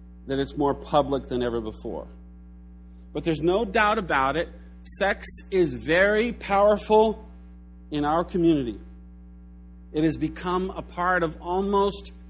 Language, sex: English, male